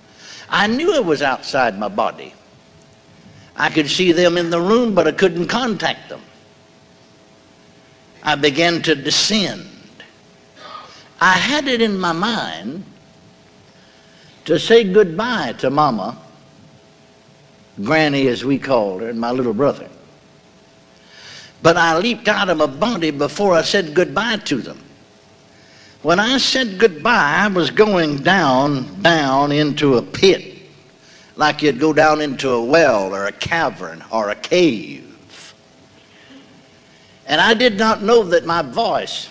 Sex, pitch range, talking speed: male, 150-220 Hz, 135 wpm